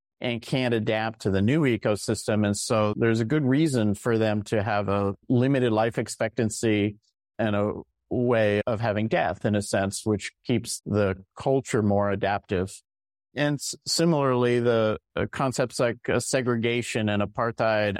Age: 50-69